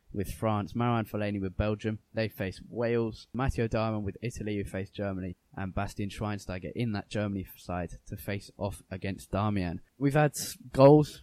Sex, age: male, 10-29